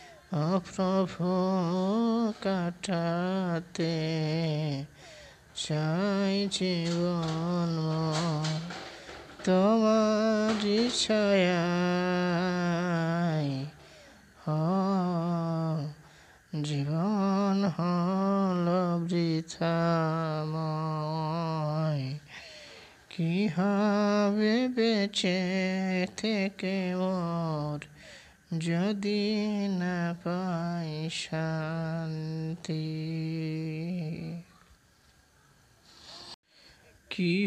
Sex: male